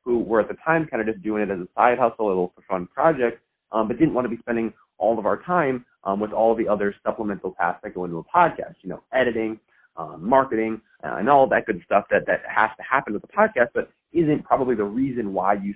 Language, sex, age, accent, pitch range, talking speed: English, male, 30-49, American, 100-130 Hz, 265 wpm